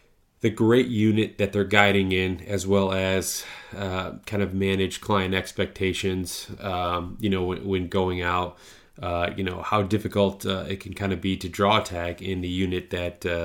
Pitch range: 90-105 Hz